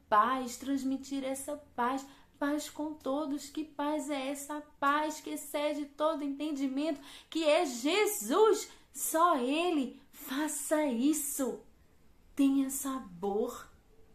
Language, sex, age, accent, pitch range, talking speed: Portuguese, female, 20-39, Brazilian, 200-295 Hz, 105 wpm